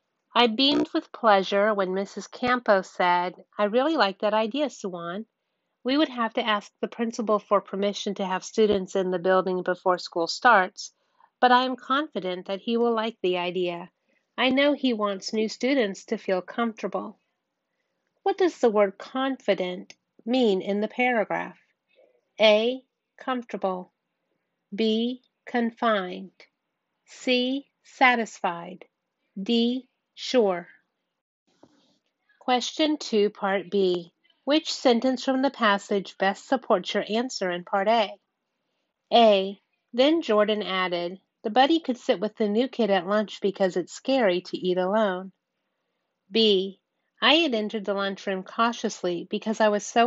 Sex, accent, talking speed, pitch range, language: female, American, 140 wpm, 190-250 Hz, English